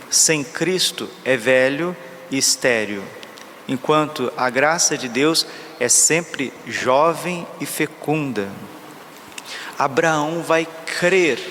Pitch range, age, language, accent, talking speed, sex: 140-175 Hz, 40-59, Portuguese, Brazilian, 100 wpm, male